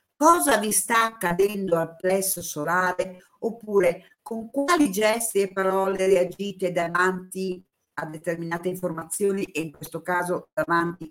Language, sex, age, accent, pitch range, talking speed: Italian, female, 50-69, native, 170-230 Hz, 125 wpm